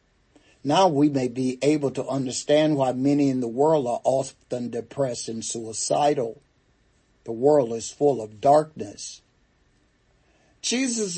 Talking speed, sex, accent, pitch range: 130 wpm, male, American, 125-150 Hz